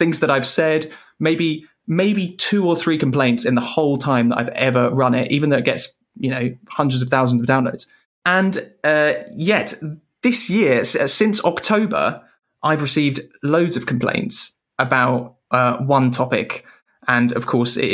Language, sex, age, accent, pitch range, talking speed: English, male, 20-39, British, 125-150 Hz, 165 wpm